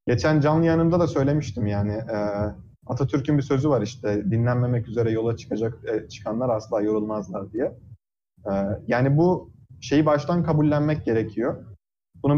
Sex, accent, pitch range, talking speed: male, native, 115-150 Hz, 125 wpm